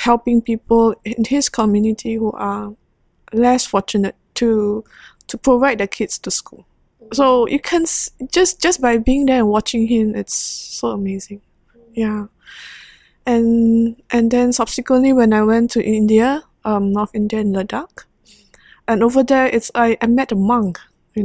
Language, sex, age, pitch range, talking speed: English, female, 20-39, 210-245 Hz, 160 wpm